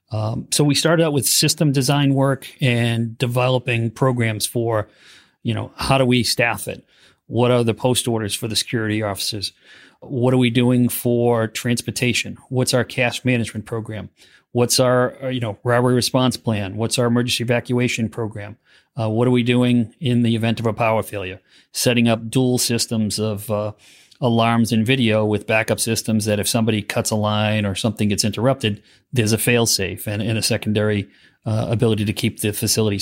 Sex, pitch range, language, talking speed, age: male, 110-125 Hz, English, 180 wpm, 40-59